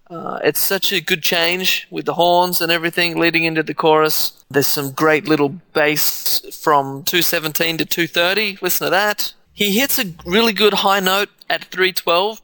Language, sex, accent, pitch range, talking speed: English, male, Australian, 155-185 Hz, 175 wpm